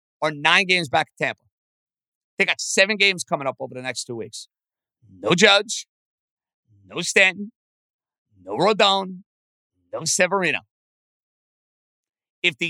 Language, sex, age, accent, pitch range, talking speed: English, male, 50-69, American, 170-270 Hz, 130 wpm